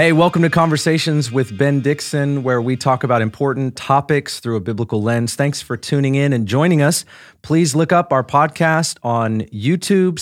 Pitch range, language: 115-145 Hz, English